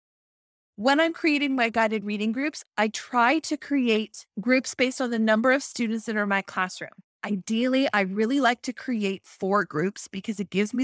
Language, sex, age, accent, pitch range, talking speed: English, female, 30-49, American, 205-250 Hz, 195 wpm